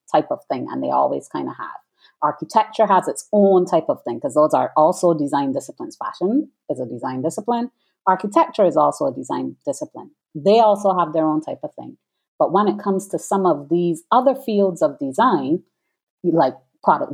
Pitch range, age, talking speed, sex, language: 160-235 Hz, 30-49, 195 wpm, female, English